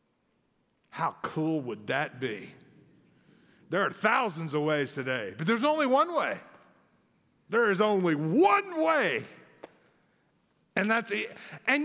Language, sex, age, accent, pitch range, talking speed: English, male, 50-69, American, 150-220 Hz, 125 wpm